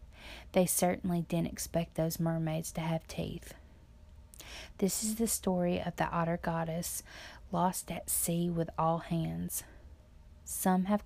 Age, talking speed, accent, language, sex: 20-39, 135 wpm, American, English, female